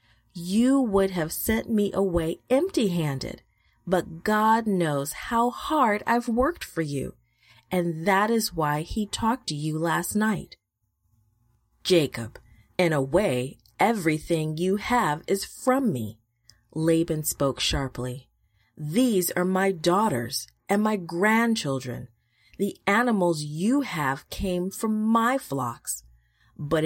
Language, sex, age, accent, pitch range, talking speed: English, female, 30-49, American, 125-195 Hz, 125 wpm